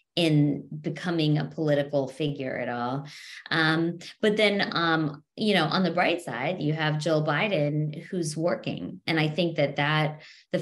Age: 20-39